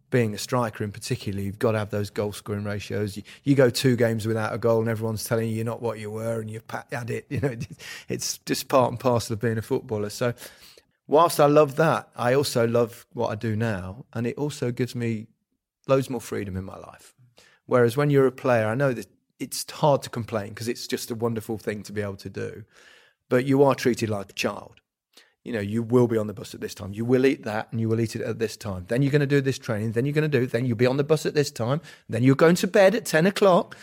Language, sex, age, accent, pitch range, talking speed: English, male, 30-49, British, 110-135 Hz, 265 wpm